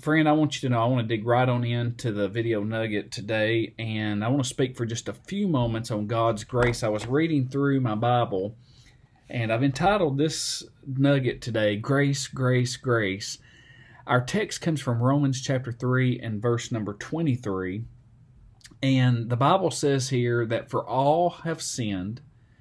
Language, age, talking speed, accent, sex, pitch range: English, 40-59, 180 wpm, American, male, 115-135 Hz